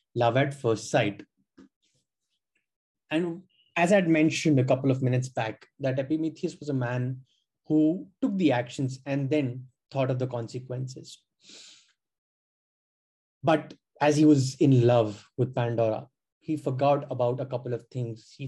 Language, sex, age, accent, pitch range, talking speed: Hindi, male, 20-39, native, 125-145 Hz, 145 wpm